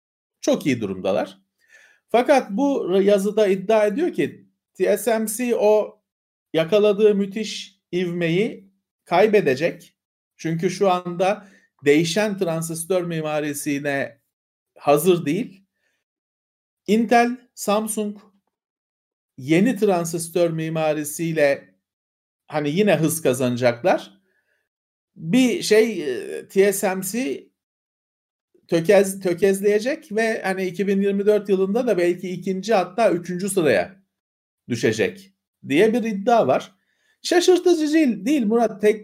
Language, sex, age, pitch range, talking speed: Turkish, male, 50-69, 165-215 Hz, 90 wpm